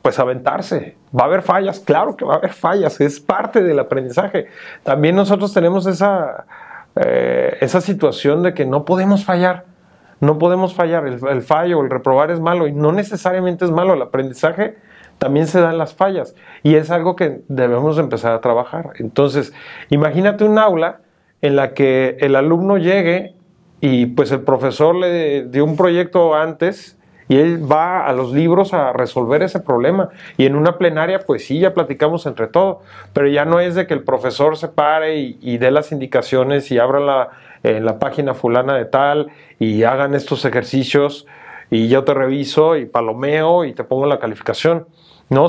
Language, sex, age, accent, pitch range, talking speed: Spanish, male, 40-59, Mexican, 140-180 Hz, 180 wpm